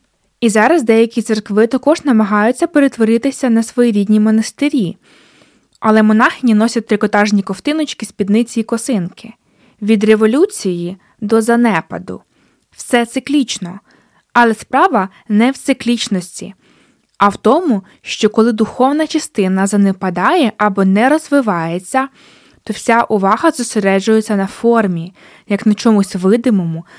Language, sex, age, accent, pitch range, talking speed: Ukrainian, female, 20-39, native, 205-255 Hz, 115 wpm